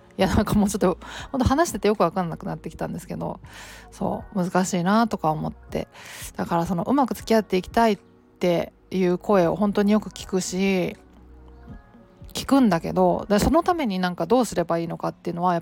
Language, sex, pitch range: Japanese, female, 170-200 Hz